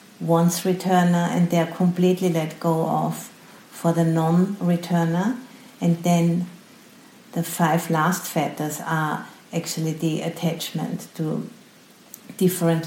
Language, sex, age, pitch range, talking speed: English, female, 50-69, 160-180 Hz, 105 wpm